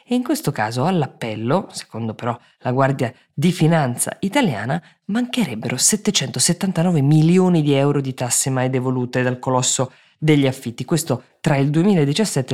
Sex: female